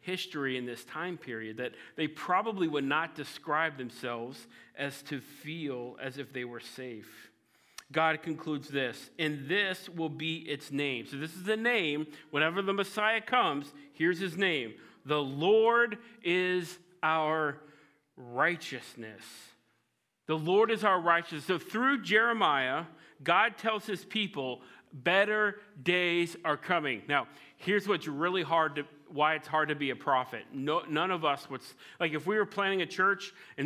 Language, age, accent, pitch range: English, 40-59, American, 145-185 Hz